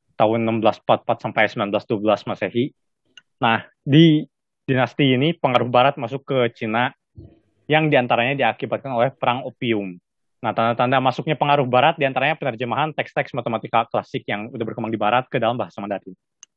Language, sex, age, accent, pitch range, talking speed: Indonesian, male, 20-39, native, 115-145 Hz, 135 wpm